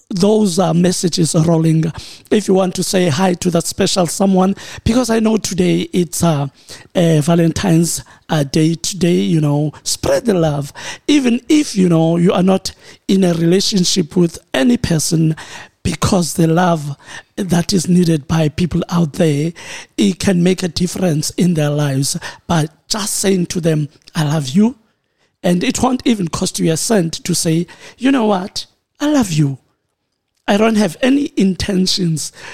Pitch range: 160-195 Hz